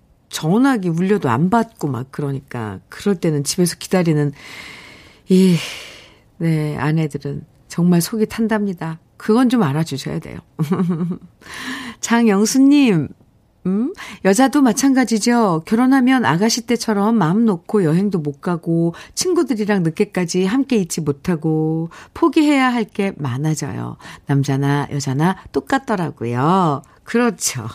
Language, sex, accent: Korean, female, native